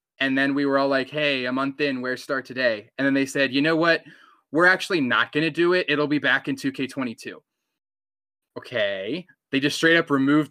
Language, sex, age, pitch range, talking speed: English, male, 20-39, 125-160 Hz, 215 wpm